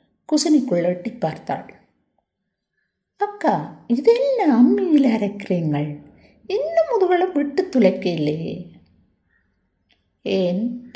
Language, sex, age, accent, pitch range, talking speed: Tamil, female, 50-69, native, 190-290 Hz, 60 wpm